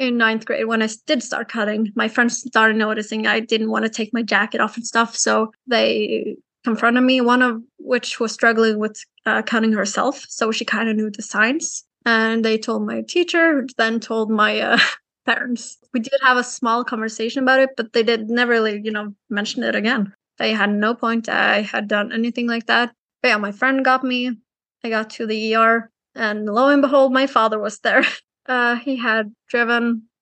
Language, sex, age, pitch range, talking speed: English, female, 20-39, 220-245 Hz, 205 wpm